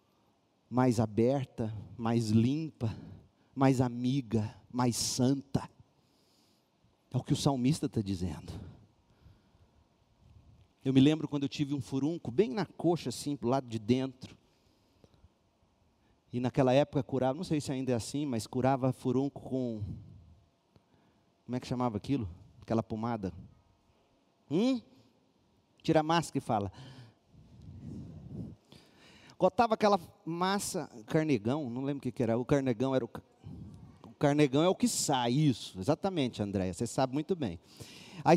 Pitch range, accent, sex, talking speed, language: 115-150 Hz, Brazilian, male, 135 wpm, Portuguese